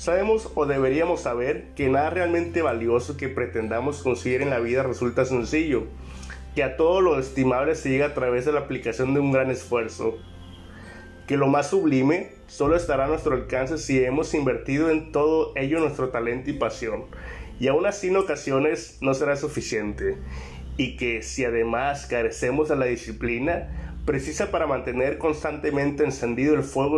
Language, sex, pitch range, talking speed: Spanish, male, 115-150 Hz, 165 wpm